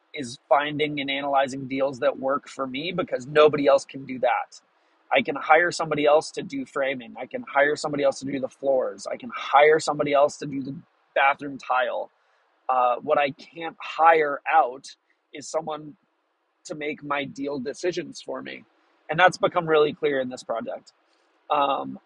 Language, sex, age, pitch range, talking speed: English, male, 30-49, 140-170 Hz, 180 wpm